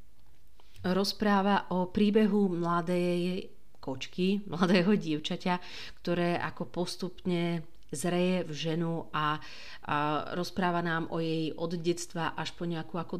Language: Slovak